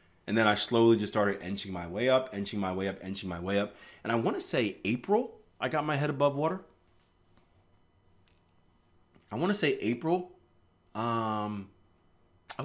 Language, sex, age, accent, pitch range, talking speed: English, male, 30-49, American, 85-100 Hz, 175 wpm